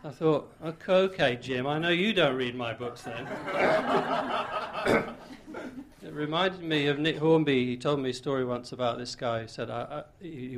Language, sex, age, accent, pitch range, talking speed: English, male, 50-69, British, 120-145 Hz, 175 wpm